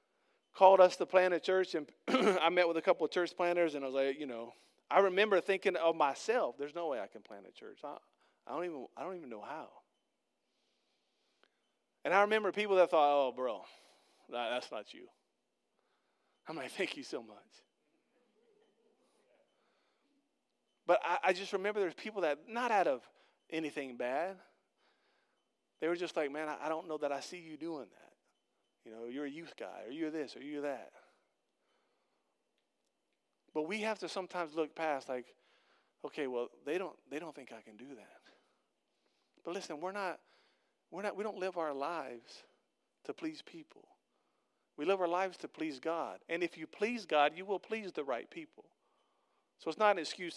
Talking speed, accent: 185 wpm, American